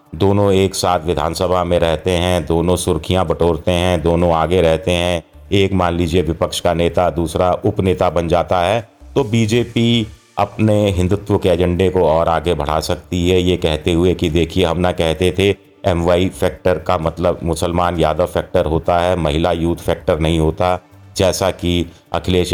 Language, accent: Hindi, native